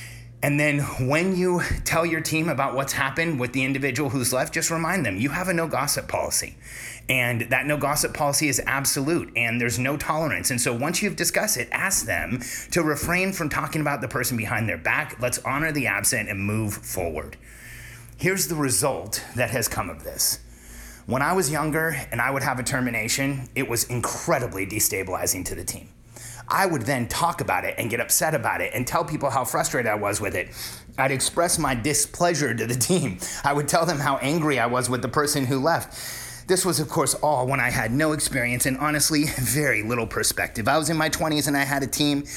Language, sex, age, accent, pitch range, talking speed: English, male, 30-49, American, 120-155 Hz, 210 wpm